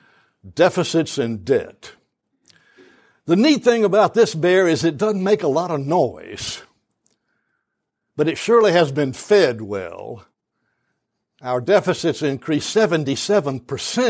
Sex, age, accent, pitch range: male, 60-79, American, 140-195 Hz